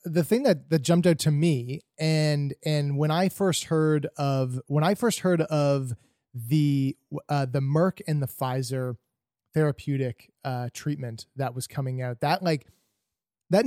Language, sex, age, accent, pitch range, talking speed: English, male, 20-39, American, 130-160 Hz, 165 wpm